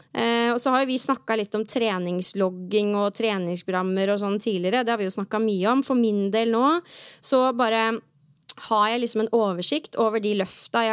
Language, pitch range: English, 205-255 Hz